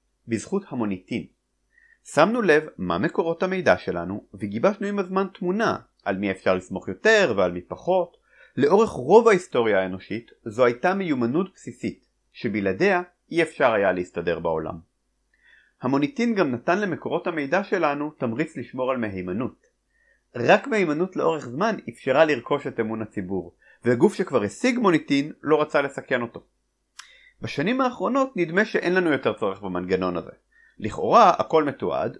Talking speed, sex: 135 wpm, male